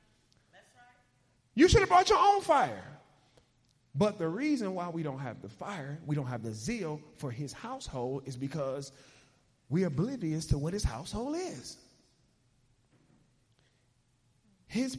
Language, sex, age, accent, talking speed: English, male, 30-49, American, 135 wpm